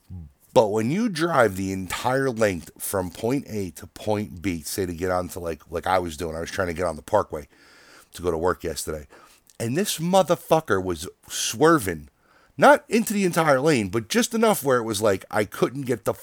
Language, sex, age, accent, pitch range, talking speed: English, male, 30-49, American, 90-130 Hz, 205 wpm